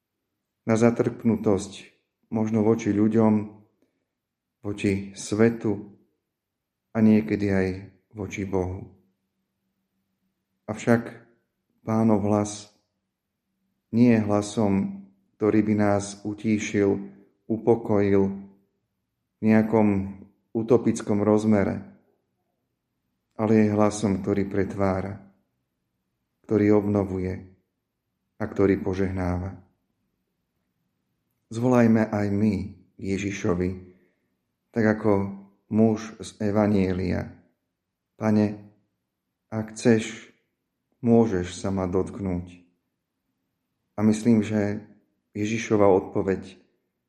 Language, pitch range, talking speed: Slovak, 95-110 Hz, 75 wpm